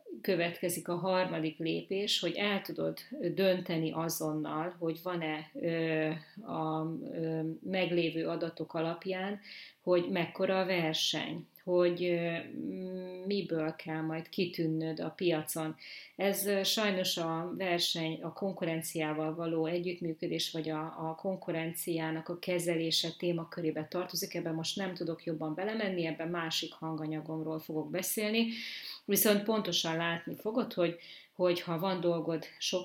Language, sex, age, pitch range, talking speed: Hungarian, female, 30-49, 160-180 Hz, 115 wpm